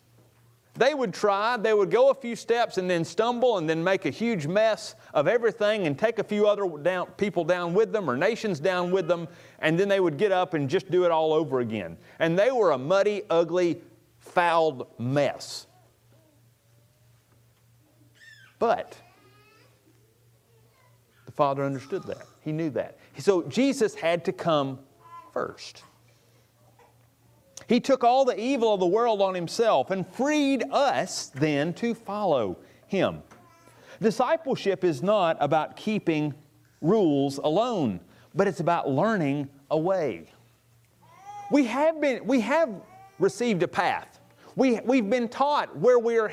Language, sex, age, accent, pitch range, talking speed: English, male, 40-59, American, 145-235 Hz, 145 wpm